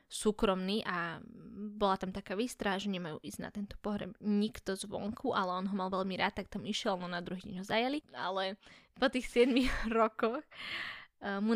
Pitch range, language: 190-225 Hz, Slovak